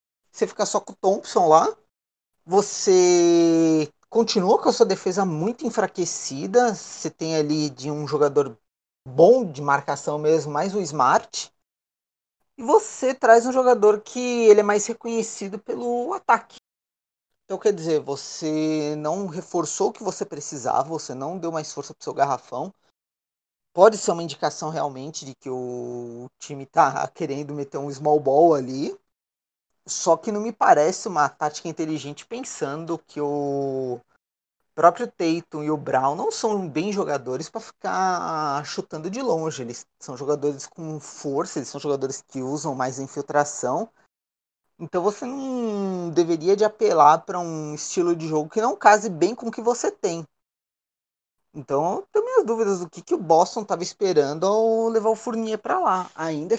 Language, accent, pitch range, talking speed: Portuguese, Brazilian, 145-210 Hz, 160 wpm